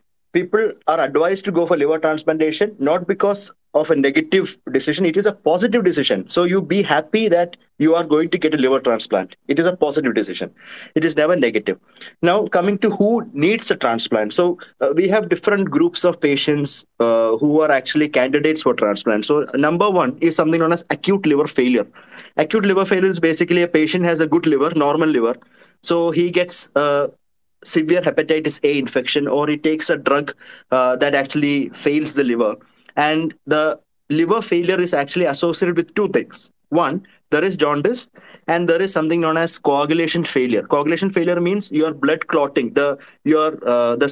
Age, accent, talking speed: 20-39, native, 190 wpm